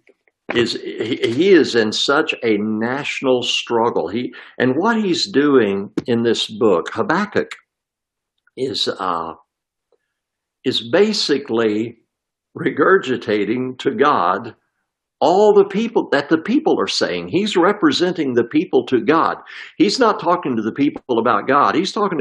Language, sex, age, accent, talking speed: English, male, 60-79, American, 130 wpm